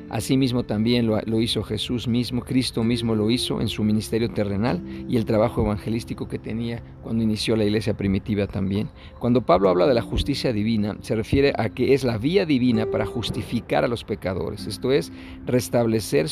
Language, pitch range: Spanish, 105-125 Hz